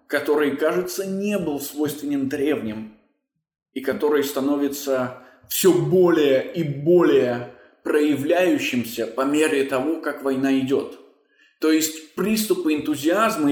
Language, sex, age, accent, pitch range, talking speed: Russian, male, 20-39, native, 130-180 Hz, 105 wpm